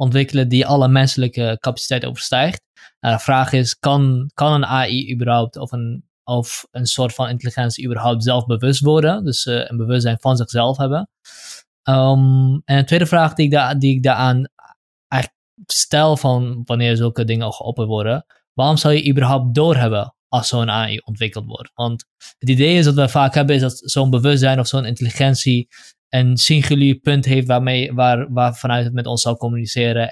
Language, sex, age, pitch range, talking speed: Dutch, male, 20-39, 120-140 Hz, 180 wpm